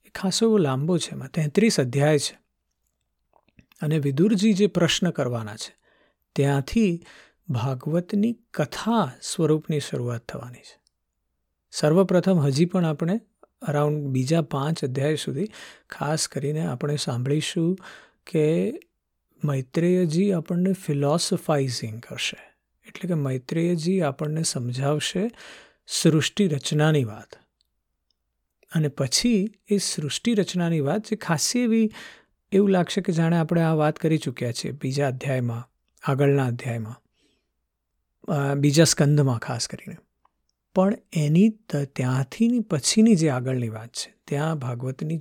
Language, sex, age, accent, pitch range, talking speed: Gujarati, male, 50-69, native, 130-185 Hz, 95 wpm